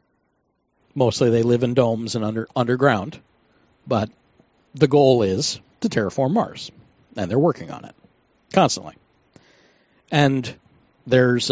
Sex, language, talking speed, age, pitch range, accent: male, English, 120 wpm, 50-69, 115-150 Hz, American